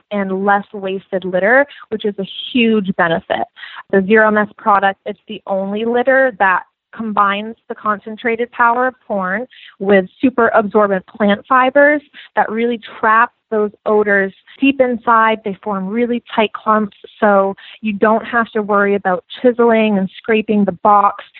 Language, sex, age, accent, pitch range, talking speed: English, female, 20-39, American, 195-225 Hz, 150 wpm